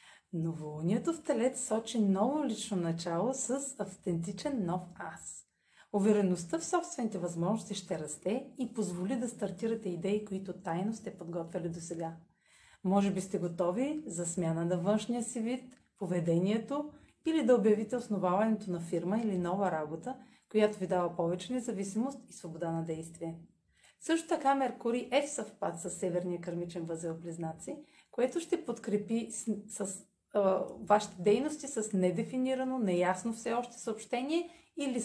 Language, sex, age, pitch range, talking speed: Bulgarian, female, 30-49, 180-250 Hz, 140 wpm